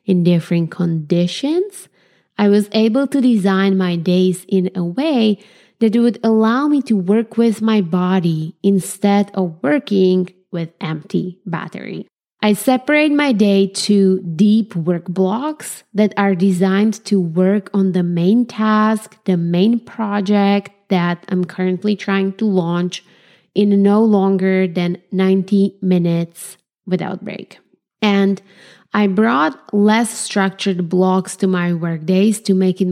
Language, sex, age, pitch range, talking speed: English, female, 20-39, 185-215 Hz, 135 wpm